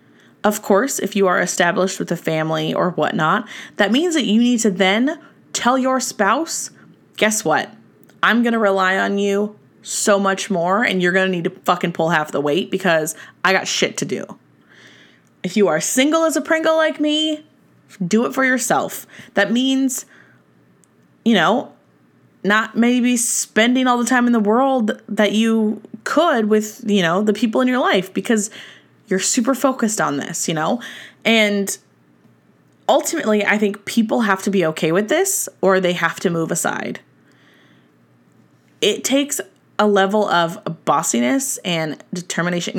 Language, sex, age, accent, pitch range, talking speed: English, female, 20-39, American, 180-245 Hz, 165 wpm